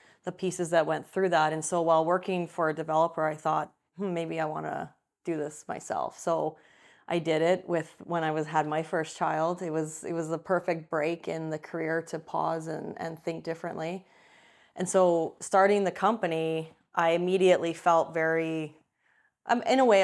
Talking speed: 190 wpm